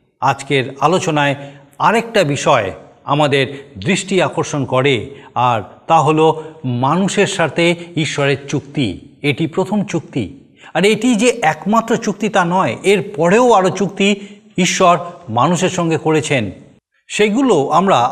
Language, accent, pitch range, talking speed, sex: Bengali, native, 140-185 Hz, 115 wpm, male